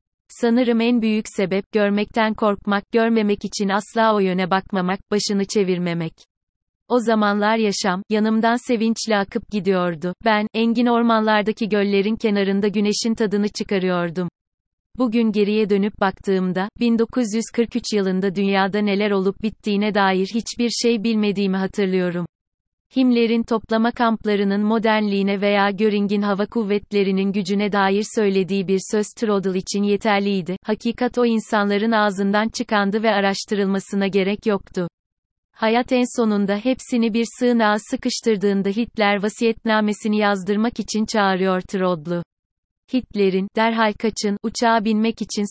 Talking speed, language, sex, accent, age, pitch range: 115 wpm, Turkish, female, native, 30-49, 195-225 Hz